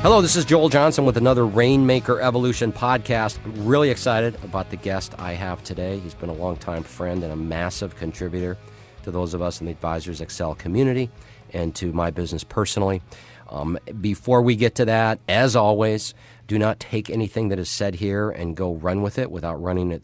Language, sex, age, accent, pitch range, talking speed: English, male, 50-69, American, 80-120 Hz, 200 wpm